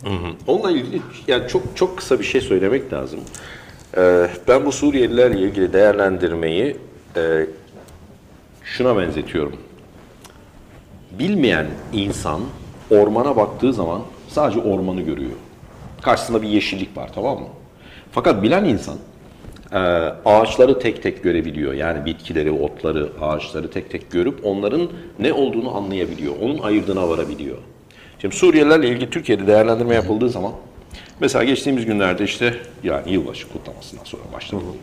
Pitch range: 90-130 Hz